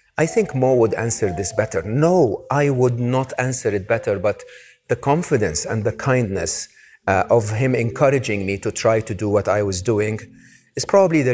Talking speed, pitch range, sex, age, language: 190 wpm, 105-130 Hz, male, 50-69, English